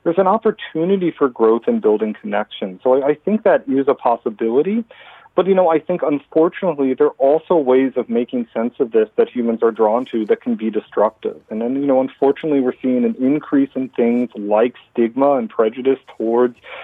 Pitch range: 120-165 Hz